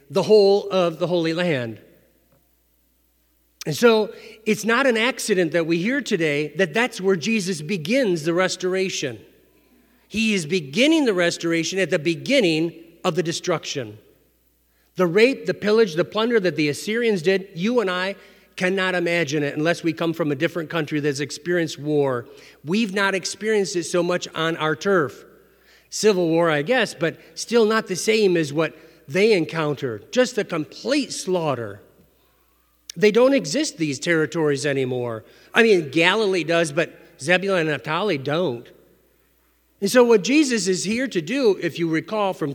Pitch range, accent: 160-210 Hz, American